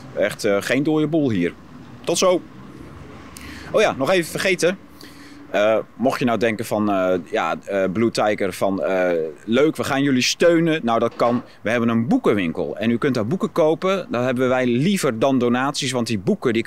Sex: male